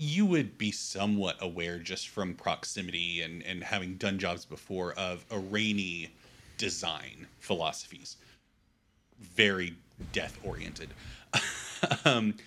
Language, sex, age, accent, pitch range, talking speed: English, male, 30-49, American, 90-115 Hz, 110 wpm